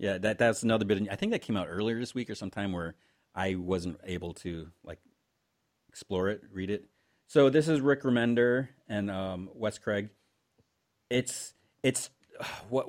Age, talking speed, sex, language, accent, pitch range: 30-49, 175 wpm, male, English, American, 95-130 Hz